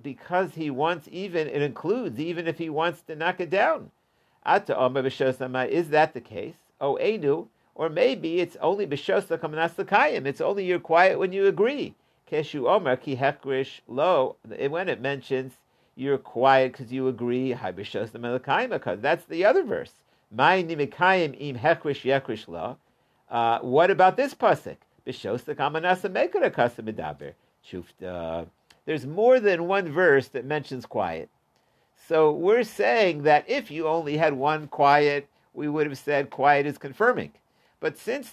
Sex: male